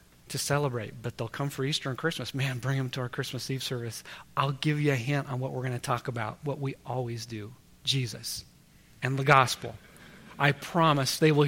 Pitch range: 130-175 Hz